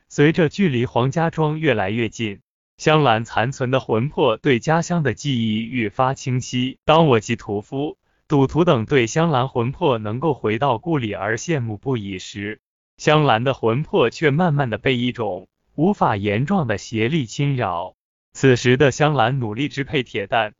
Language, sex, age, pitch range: Chinese, male, 20-39, 110-150 Hz